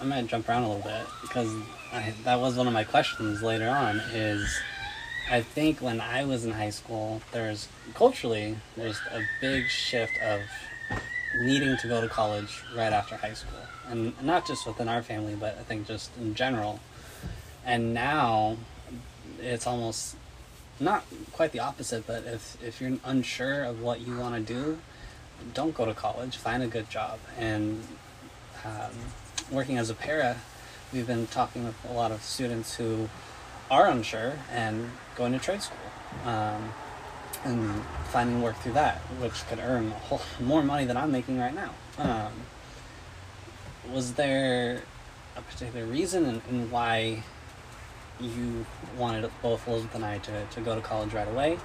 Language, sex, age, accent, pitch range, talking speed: English, male, 20-39, American, 110-125 Hz, 165 wpm